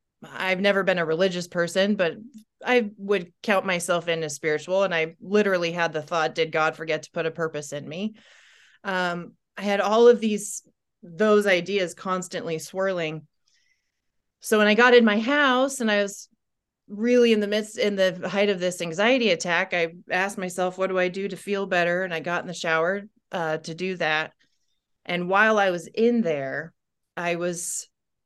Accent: American